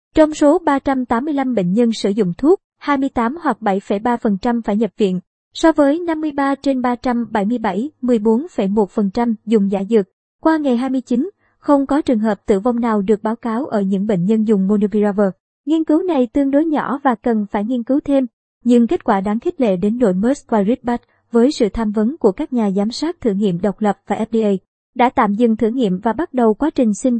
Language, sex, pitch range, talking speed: Vietnamese, male, 215-260 Hz, 200 wpm